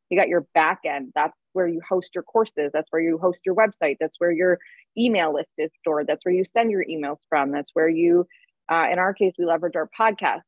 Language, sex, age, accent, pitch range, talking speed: English, female, 20-39, American, 160-195 Hz, 240 wpm